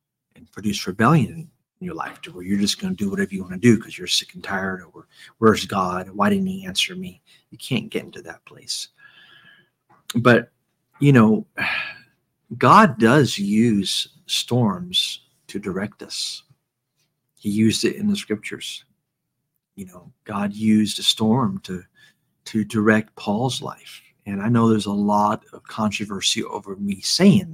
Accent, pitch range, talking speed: American, 105-160 Hz, 165 wpm